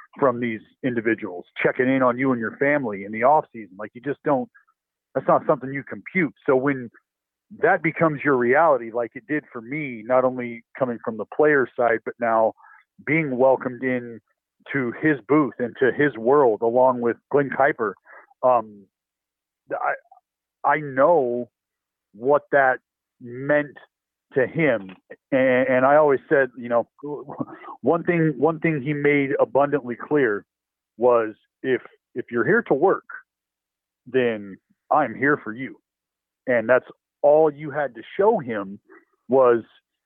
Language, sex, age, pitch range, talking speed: English, male, 40-59, 115-145 Hz, 150 wpm